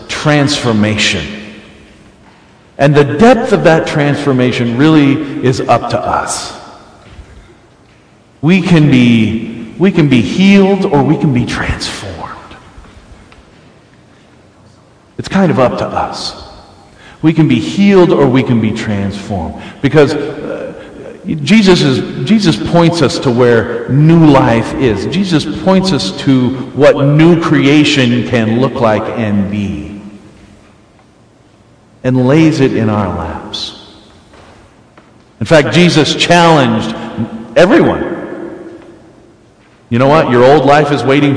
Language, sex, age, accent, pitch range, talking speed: English, male, 50-69, American, 105-145 Hz, 115 wpm